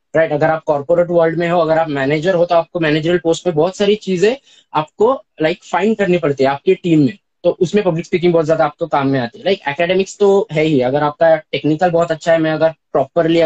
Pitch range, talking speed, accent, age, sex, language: 150-175 Hz, 210 wpm, native, 20-39, male, Hindi